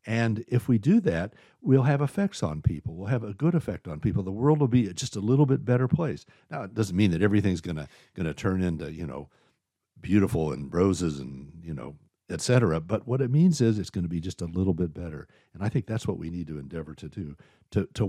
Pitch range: 85-120 Hz